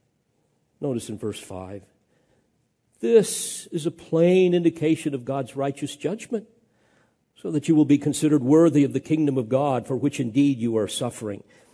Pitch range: 145-205 Hz